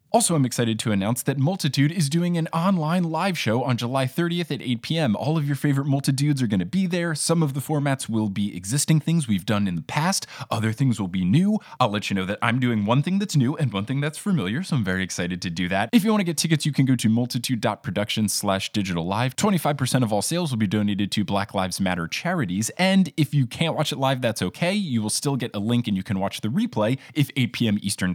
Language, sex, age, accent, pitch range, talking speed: English, male, 20-39, American, 115-180 Hz, 255 wpm